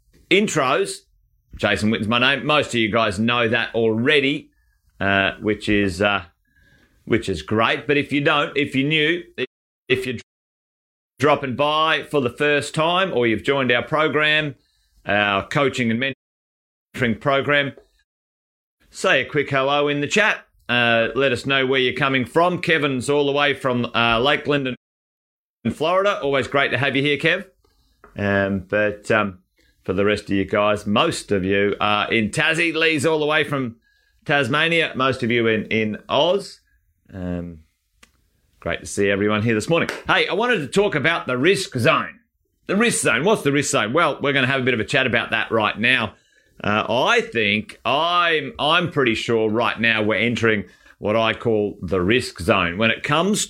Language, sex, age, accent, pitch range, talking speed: English, male, 30-49, Australian, 105-145 Hz, 180 wpm